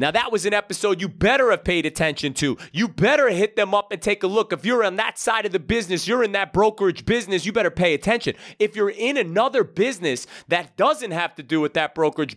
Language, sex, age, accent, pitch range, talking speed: English, male, 30-49, American, 145-205 Hz, 245 wpm